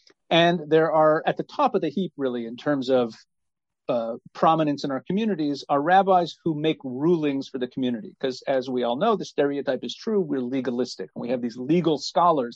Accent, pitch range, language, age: American, 135-170 Hz, English, 40-59